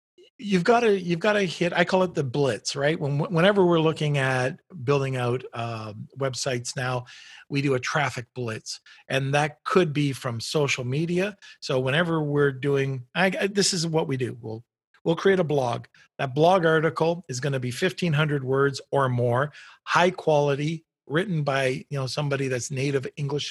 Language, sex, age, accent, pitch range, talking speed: English, male, 50-69, American, 135-175 Hz, 185 wpm